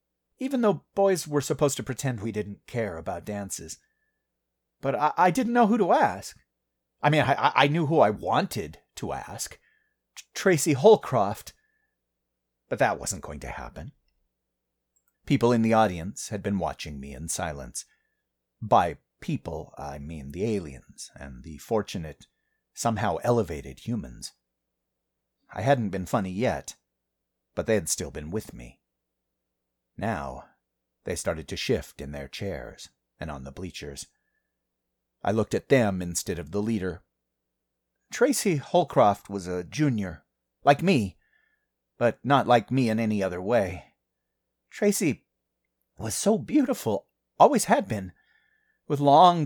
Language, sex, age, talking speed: English, male, 40-59, 140 wpm